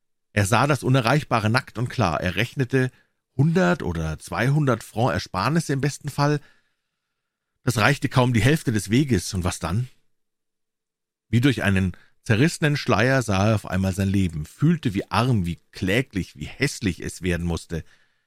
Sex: male